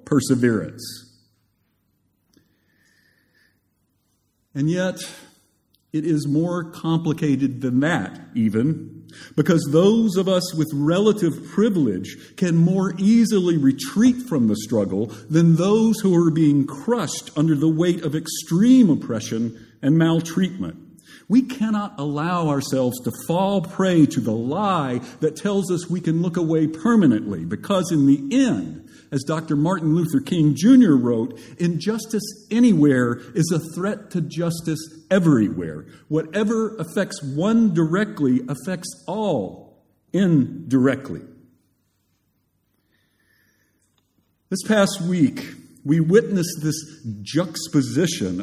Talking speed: 110 wpm